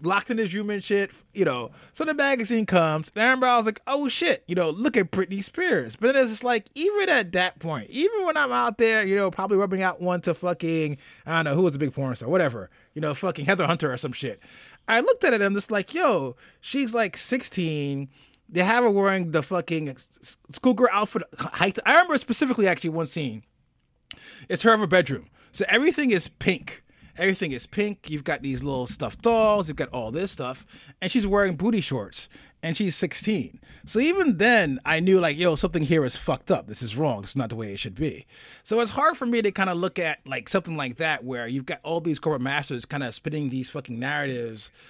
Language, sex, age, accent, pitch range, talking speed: English, male, 20-39, American, 145-220 Hz, 230 wpm